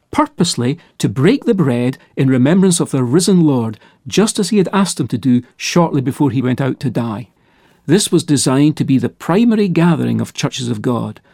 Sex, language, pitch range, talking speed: male, English, 135-185 Hz, 200 wpm